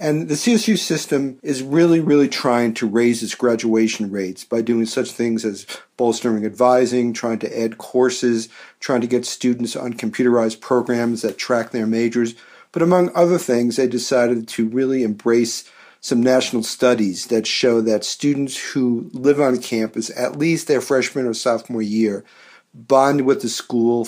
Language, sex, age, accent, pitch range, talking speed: English, male, 50-69, American, 115-130 Hz, 165 wpm